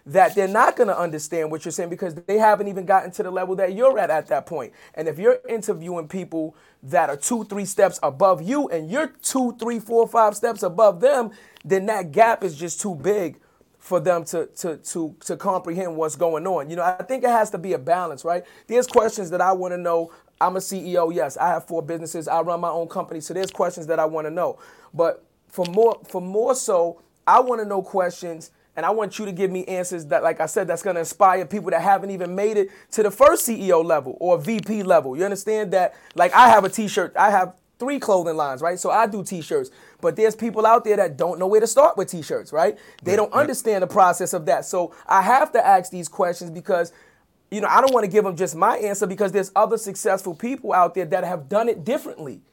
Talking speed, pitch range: 235 wpm, 175-220 Hz